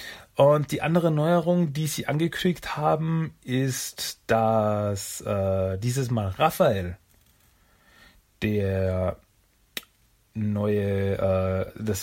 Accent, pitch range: German, 100-135 Hz